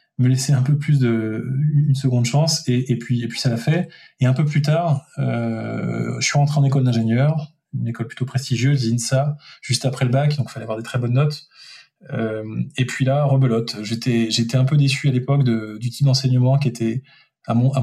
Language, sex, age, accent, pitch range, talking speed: French, male, 20-39, French, 120-140 Hz, 220 wpm